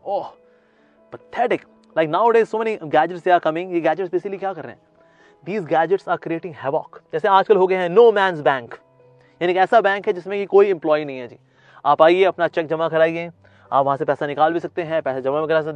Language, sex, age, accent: English, male, 30-49, Indian